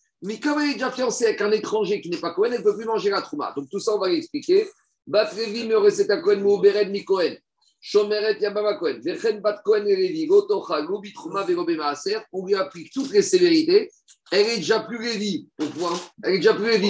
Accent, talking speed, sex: French, 135 wpm, male